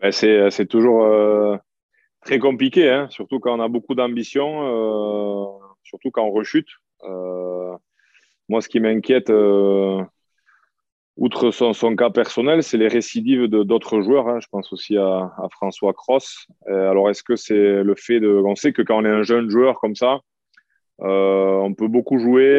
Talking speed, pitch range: 165 wpm, 100-120 Hz